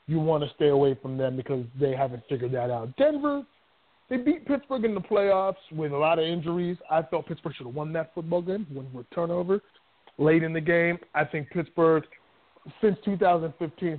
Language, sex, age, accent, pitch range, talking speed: English, male, 30-49, American, 135-165 Hz, 195 wpm